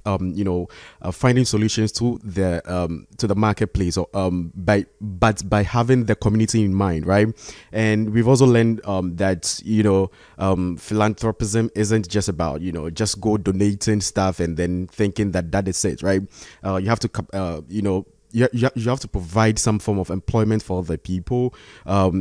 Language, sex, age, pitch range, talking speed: English, male, 20-39, 95-115 Hz, 190 wpm